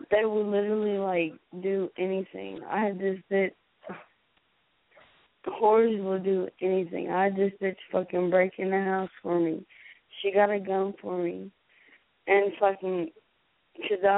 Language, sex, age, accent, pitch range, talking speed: English, female, 20-39, American, 180-205 Hz, 145 wpm